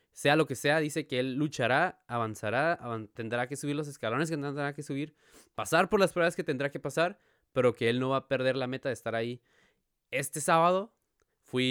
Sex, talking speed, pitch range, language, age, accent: male, 215 wpm, 120-155 Hz, Spanish, 20-39, Mexican